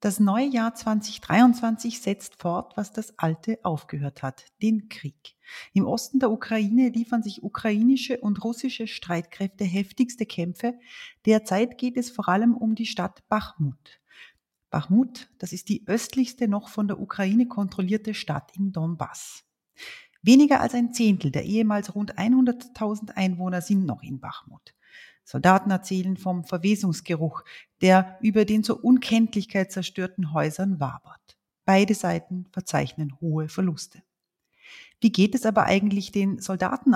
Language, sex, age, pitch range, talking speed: German, female, 30-49, 185-230 Hz, 135 wpm